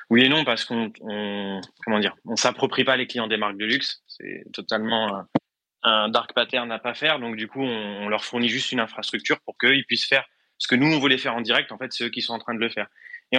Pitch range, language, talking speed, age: 110-130 Hz, English, 255 wpm, 20-39